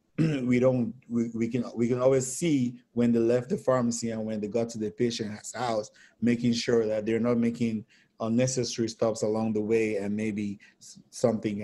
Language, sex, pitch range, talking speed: English, male, 110-125 Hz, 185 wpm